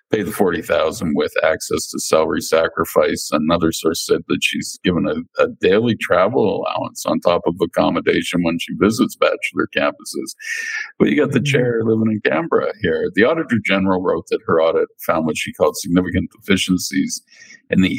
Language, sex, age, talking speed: English, male, 50-69, 175 wpm